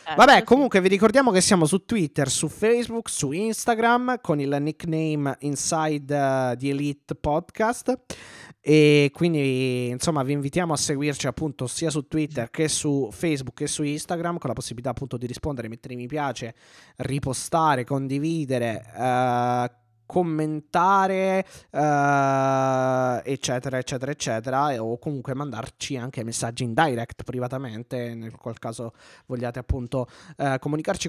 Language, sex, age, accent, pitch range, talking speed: Italian, male, 20-39, native, 120-150 Hz, 130 wpm